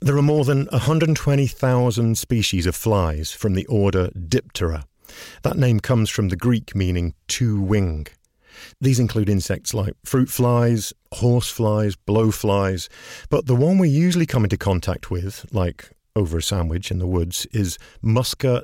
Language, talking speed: English, 155 wpm